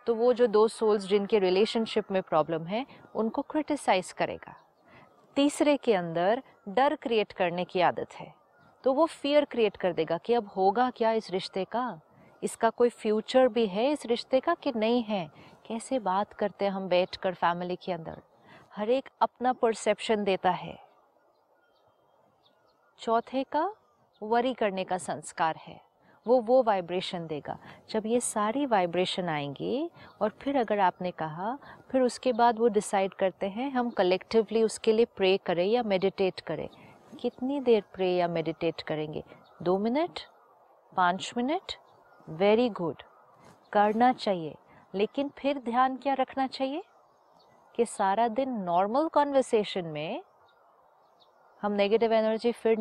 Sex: female